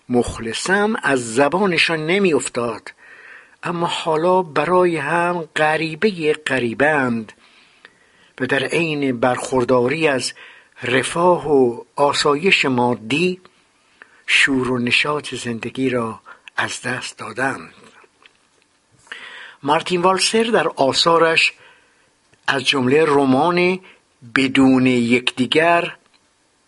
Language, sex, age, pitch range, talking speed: Persian, male, 60-79, 130-180 Hz, 80 wpm